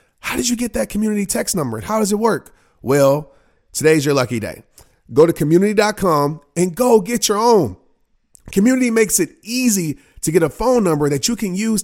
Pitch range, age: 150-210 Hz, 30-49